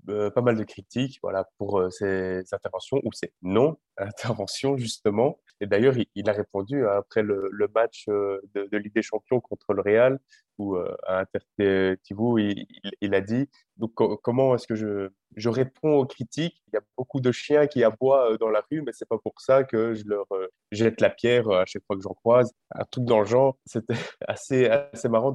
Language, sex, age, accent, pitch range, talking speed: French, male, 20-39, French, 100-125 Hz, 215 wpm